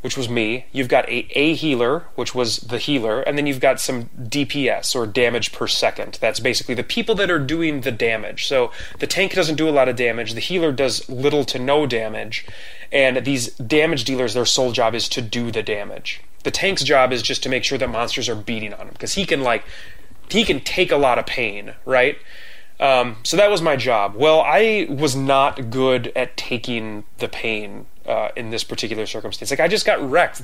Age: 20-39